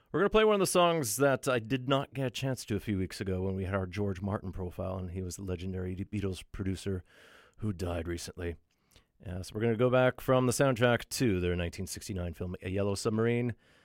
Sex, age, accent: male, 40-59, American